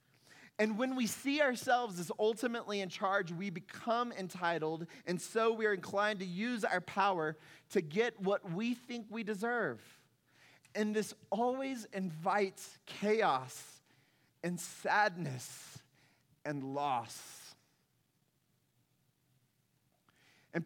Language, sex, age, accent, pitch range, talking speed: English, male, 30-49, American, 180-230 Hz, 110 wpm